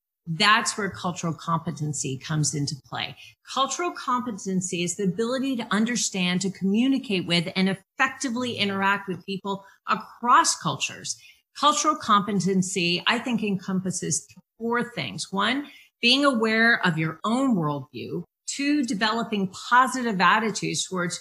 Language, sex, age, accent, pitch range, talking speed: English, female, 40-59, American, 175-240 Hz, 120 wpm